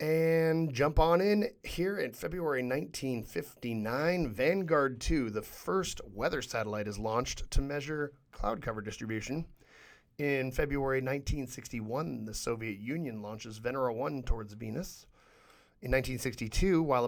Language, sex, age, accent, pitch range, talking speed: English, male, 30-49, American, 115-145 Hz, 125 wpm